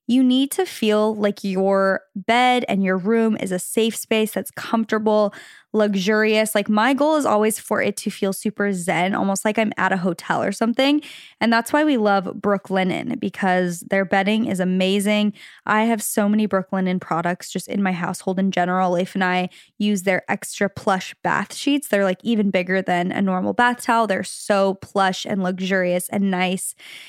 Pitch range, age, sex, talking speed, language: 190-230 Hz, 10-29, female, 190 wpm, English